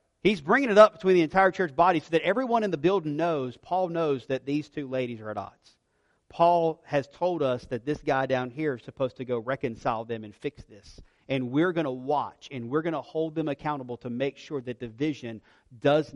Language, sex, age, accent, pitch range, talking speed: English, male, 40-59, American, 135-175 Hz, 230 wpm